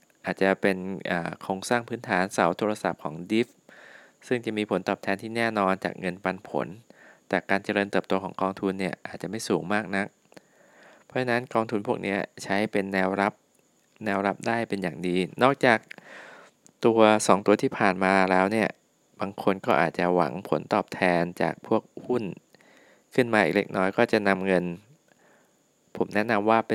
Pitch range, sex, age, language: 95-110 Hz, male, 20-39, Thai